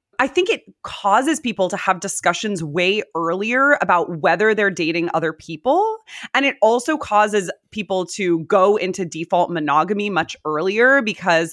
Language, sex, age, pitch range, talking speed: English, female, 20-39, 170-235 Hz, 150 wpm